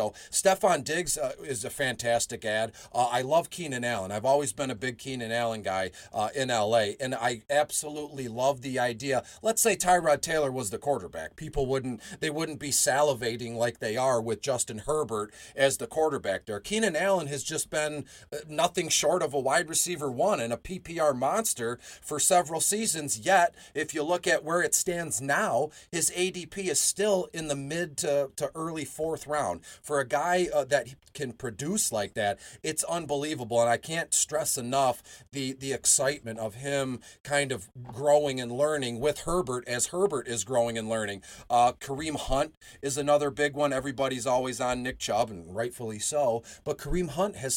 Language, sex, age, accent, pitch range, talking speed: English, male, 40-59, American, 125-155 Hz, 185 wpm